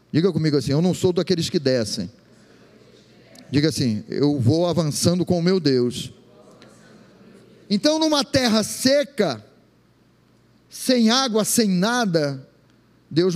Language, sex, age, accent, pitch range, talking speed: Portuguese, male, 40-59, Brazilian, 150-225 Hz, 120 wpm